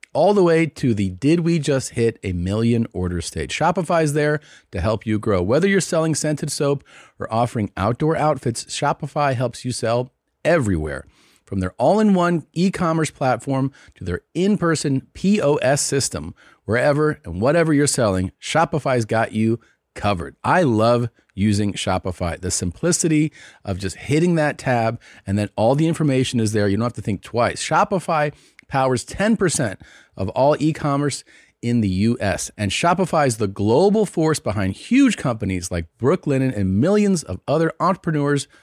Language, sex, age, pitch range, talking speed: English, male, 40-59, 105-150 Hz, 160 wpm